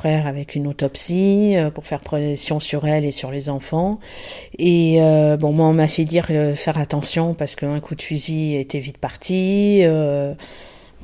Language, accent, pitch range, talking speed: French, French, 155-180 Hz, 175 wpm